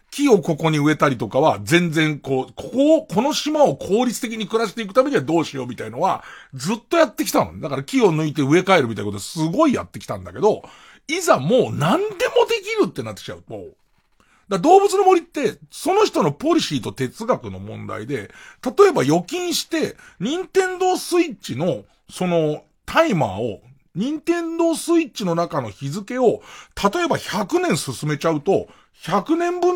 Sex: male